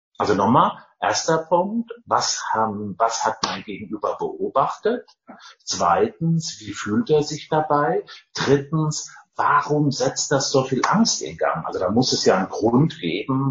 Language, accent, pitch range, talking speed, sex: German, German, 100-160 Hz, 145 wpm, male